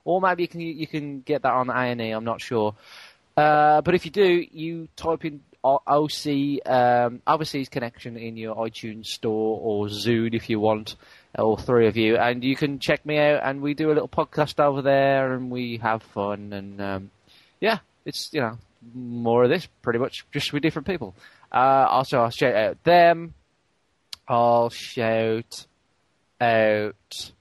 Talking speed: 180 wpm